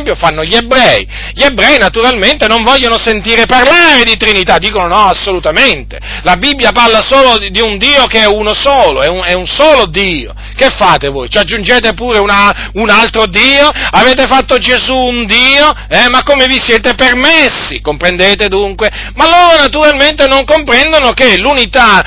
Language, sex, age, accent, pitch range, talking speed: Italian, male, 40-59, native, 195-270 Hz, 170 wpm